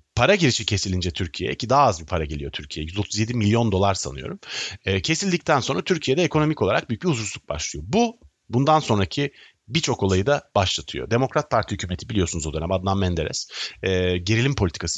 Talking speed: 165 wpm